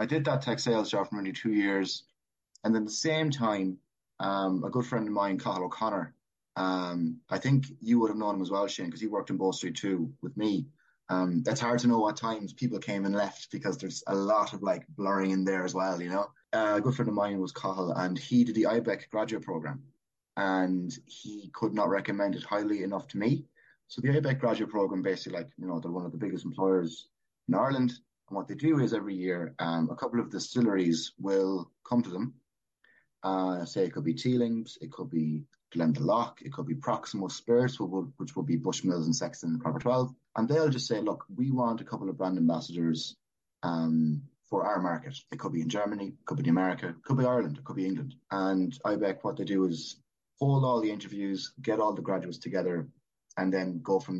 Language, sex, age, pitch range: English, male, 20-39, 95-120 Hz